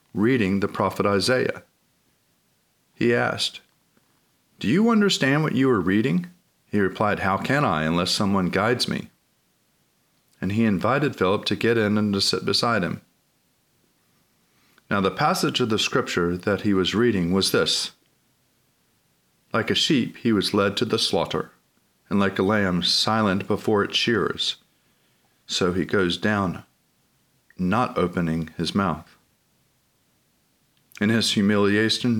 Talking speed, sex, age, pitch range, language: 140 wpm, male, 40-59, 95-115 Hz, English